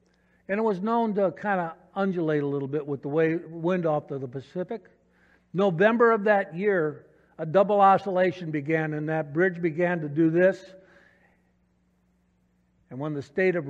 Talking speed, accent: 170 wpm, American